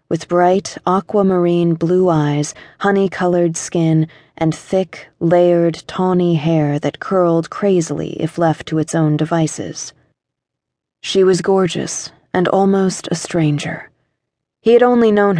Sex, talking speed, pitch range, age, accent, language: female, 125 wpm, 155-180 Hz, 30-49, American, English